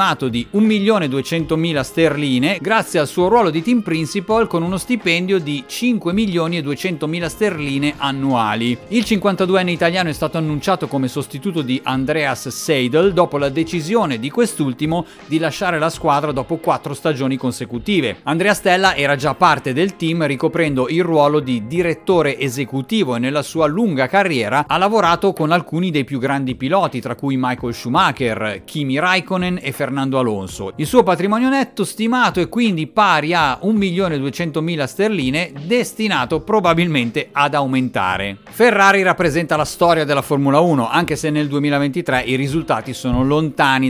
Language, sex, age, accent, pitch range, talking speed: Italian, male, 40-59, native, 135-180 Hz, 145 wpm